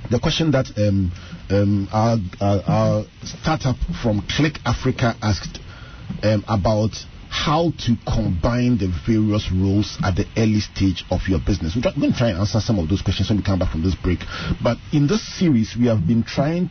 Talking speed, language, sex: 190 wpm, English, male